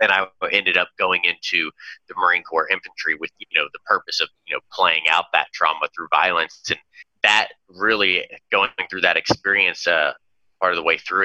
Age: 30-49